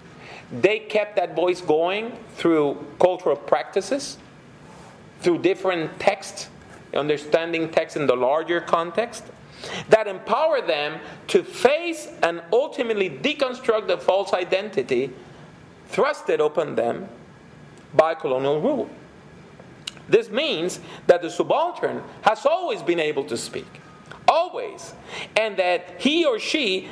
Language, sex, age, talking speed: English, male, 40-59, 115 wpm